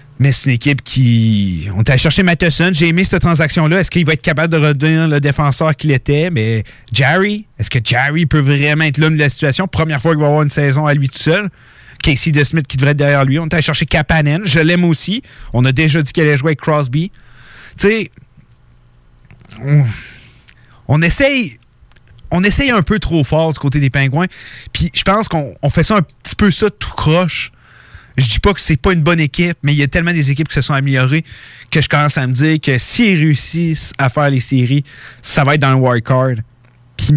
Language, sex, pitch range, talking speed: French, male, 125-160 Hz, 230 wpm